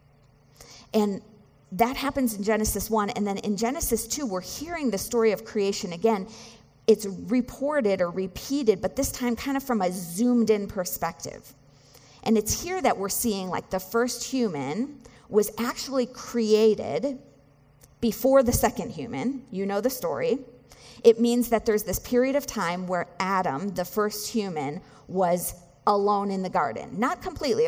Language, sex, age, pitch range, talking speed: English, female, 40-59, 170-240 Hz, 155 wpm